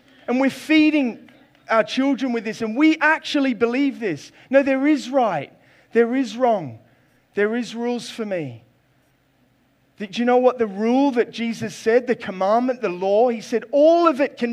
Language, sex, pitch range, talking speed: English, male, 155-230 Hz, 180 wpm